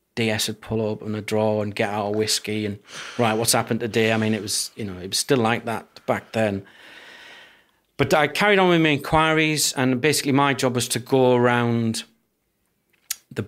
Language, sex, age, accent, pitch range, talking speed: English, male, 40-59, British, 105-120 Hz, 205 wpm